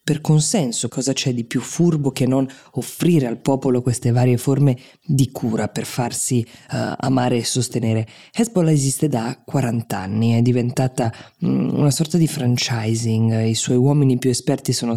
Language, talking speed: Italian, 165 wpm